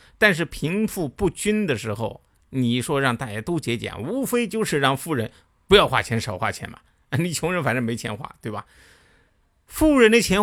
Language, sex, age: Chinese, male, 50-69